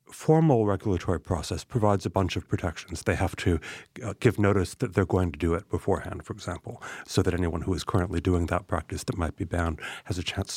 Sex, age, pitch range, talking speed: male, 60-79, 90-110 Hz, 220 wpm